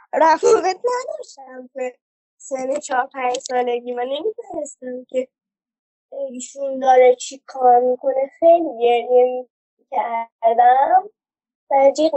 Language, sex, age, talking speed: Persian, male, 20-39, 95 wpm